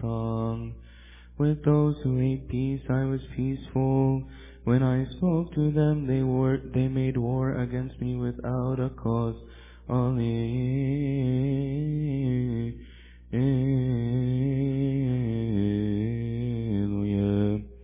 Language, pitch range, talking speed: English, 115-135 Hz, 80 wpm